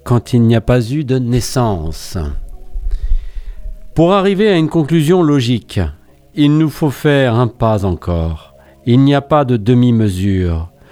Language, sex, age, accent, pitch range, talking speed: French, male, 50-69, French, 100-145 Hz, 150 wpm